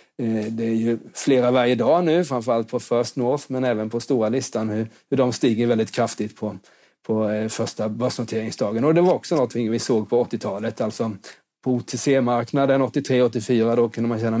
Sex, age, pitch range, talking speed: male, 30-49, 115-135 Hz, 175 wpm